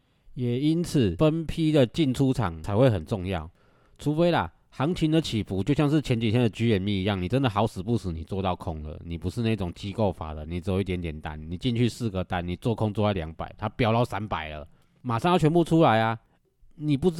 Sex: male